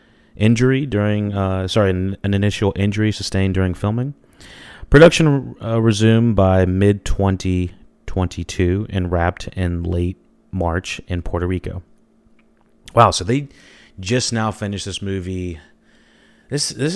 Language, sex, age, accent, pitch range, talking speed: English, male, 30-49, American, 85-100 Hz, 120 wpm